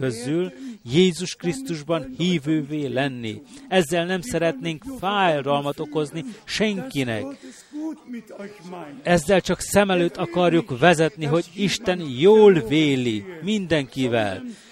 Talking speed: 90 wpm